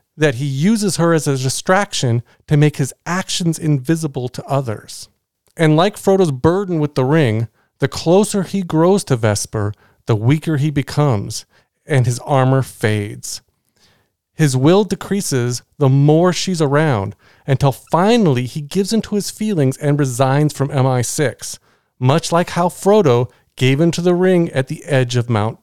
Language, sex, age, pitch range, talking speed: English, male, 40-59, 125-170 Hz, 155 wpm